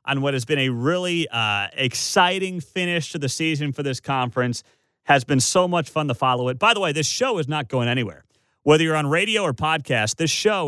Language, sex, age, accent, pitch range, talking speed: English, male, 30-49, American, 130-185 Hz, 225 wpm